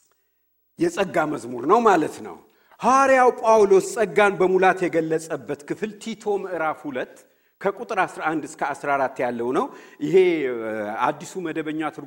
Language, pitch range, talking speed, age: English, 175-255 Hz, 135 wpm, 60-79